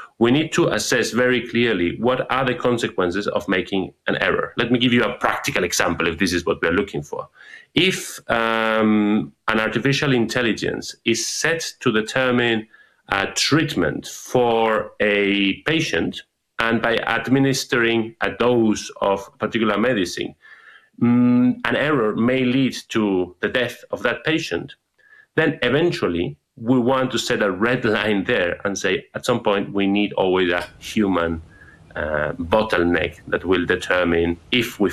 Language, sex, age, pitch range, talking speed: English, male, 30-49, 100-125 Hz, 150 wpm